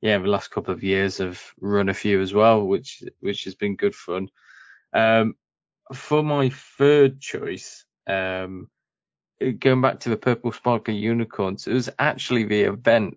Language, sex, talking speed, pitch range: English, male, 165 wpm, 100-120 Hz